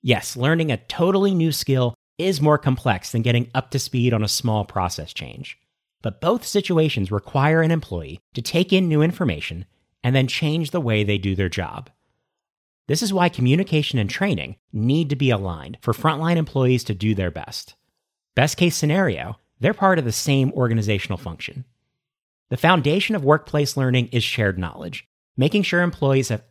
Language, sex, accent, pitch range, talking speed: English, male, American, 105-155 Hz, 175 wpm